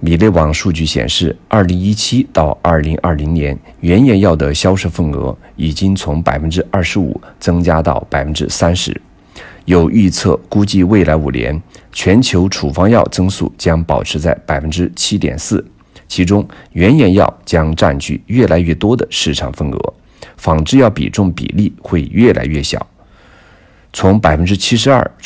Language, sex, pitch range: Chinese, male, 75-100 Hz